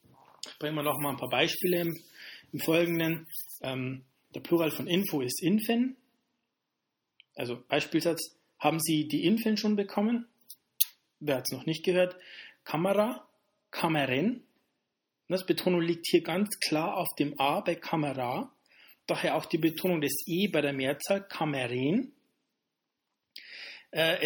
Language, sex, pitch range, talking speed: German, male, 150-205 Hz, 135 wpm